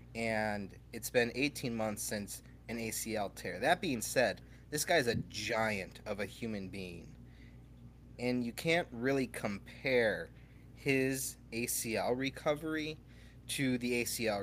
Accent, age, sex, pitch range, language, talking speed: American, 30-49, male, 105-125 Hz, English, 130 wpm